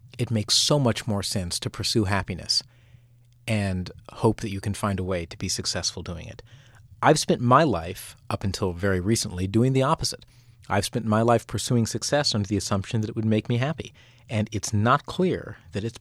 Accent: American